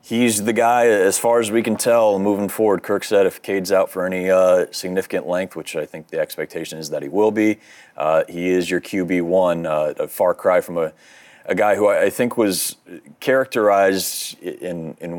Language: English